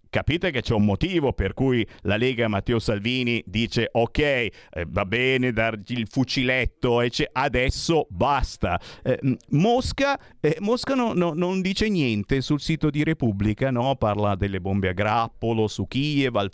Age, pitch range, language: 50-69, 110-150 Hz, Italian